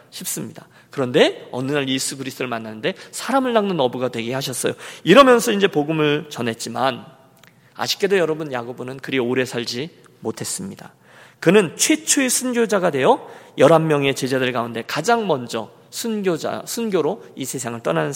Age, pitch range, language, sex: 40-59, 135-225 Hz, Korean, male